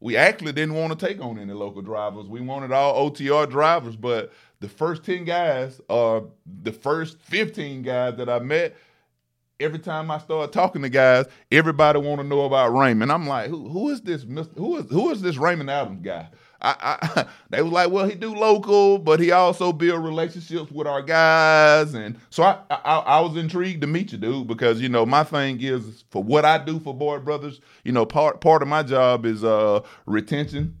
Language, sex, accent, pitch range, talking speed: English, male, American, 115-155 Hz, 205 wpm